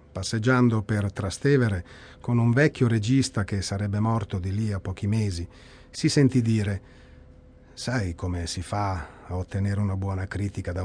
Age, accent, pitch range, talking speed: 40-59, native, 95-135 Hz, 155 wpm